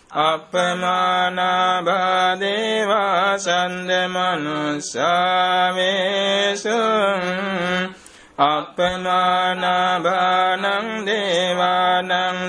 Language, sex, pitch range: Vietnamese, male, 180-195 Hz